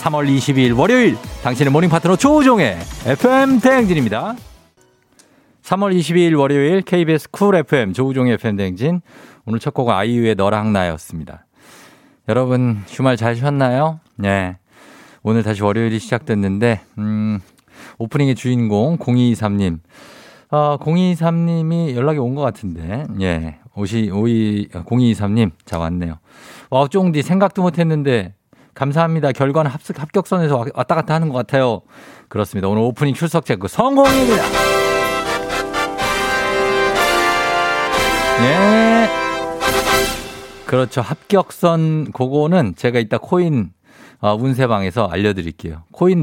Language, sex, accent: Korean, male, native